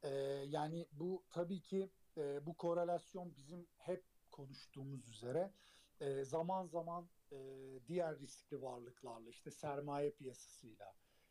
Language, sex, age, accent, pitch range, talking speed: Turkish, male, 50-69, native, 140-180 Hz, 95 wpm